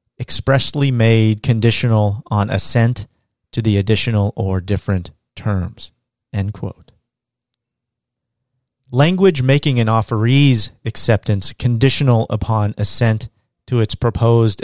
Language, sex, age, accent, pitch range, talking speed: English, male, 40-59, American, 105-125 Hz, 100 wpm